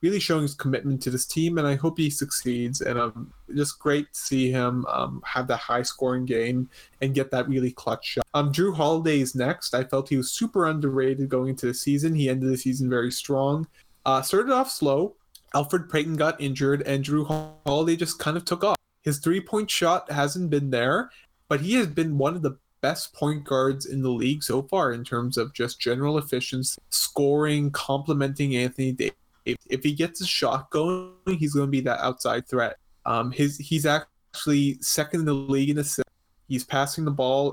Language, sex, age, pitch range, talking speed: English, male, 20-39, 130-150 Hz, 205 wpm